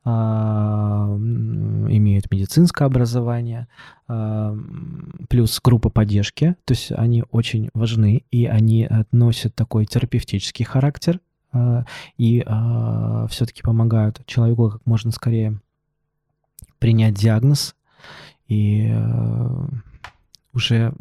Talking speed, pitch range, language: 80 wpm, 110-135 Hz, Russian